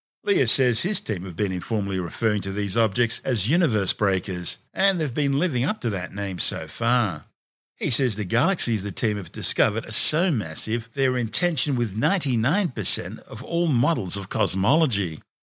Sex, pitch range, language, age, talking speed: male, 100-135 Hz, English, 50-69, 175 wpm